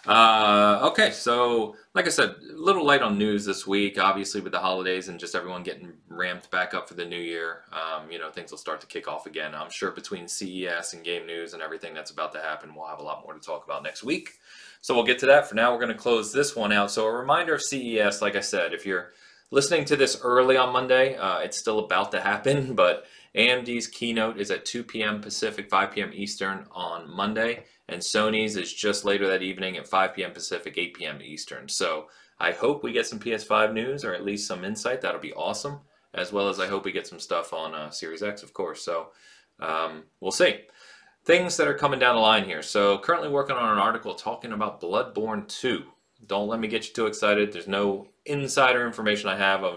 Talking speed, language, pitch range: 230 wpm, English, 95-120 Hz